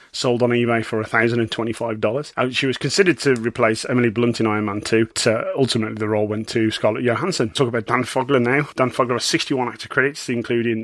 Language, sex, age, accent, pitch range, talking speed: English, male, 30-49, British, 115-135 Hz, 205 wpm